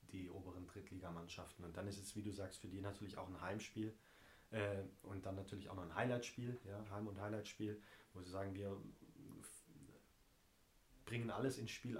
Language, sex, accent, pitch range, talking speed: German, male, German, 100-115 Hz, 175 wpm